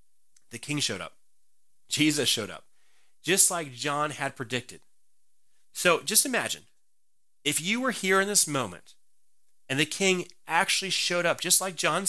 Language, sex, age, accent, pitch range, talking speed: English, male, 30-49, American, 130-175 Hz, 155 wpm